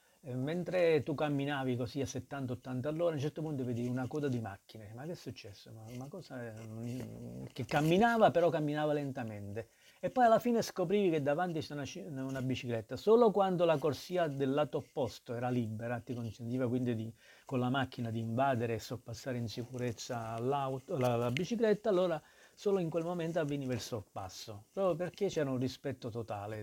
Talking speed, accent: 175 wpm, native